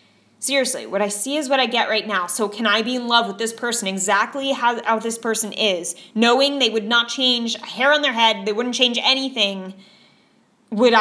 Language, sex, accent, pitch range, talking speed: English, female, American, 200-255 Hz, 215 wpm